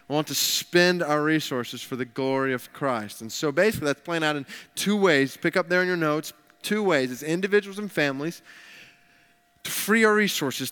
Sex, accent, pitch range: male, American, 145-185 Hz